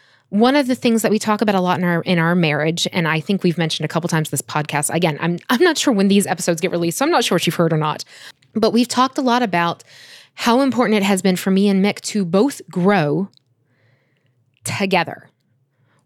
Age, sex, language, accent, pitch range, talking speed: 20-39, female, English, American, 170-240 Hz, 235 wpm